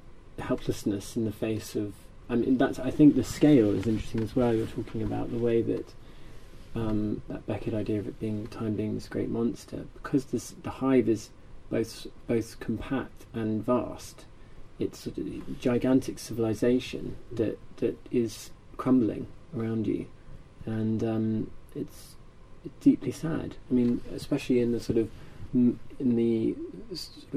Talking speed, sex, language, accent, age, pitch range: 150 wpm, male, English, British, 30-49, 105-125 Hz